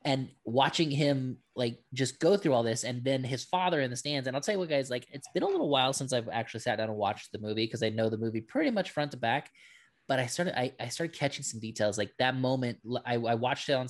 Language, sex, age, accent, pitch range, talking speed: English, male, 20-39, American, 115-150 Hz, 275 wpm